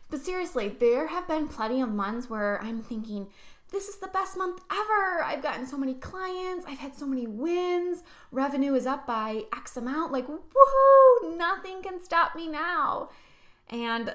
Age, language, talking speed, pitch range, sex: 10-29, English, 175 wpm, 220-285 Hz, female